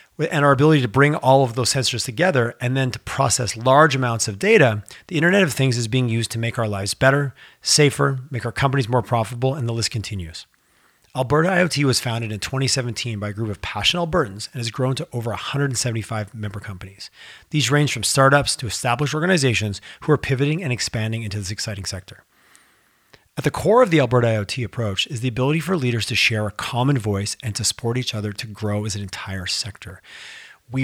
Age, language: 30-49, English